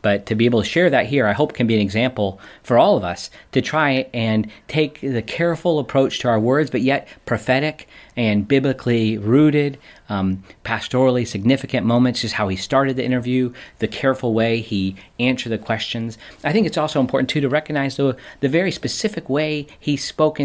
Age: 40-59